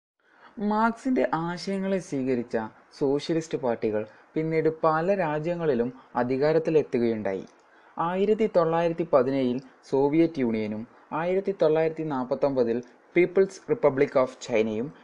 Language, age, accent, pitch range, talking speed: Malayalam, 20-39, native, 120-175 Hz, 85 wpm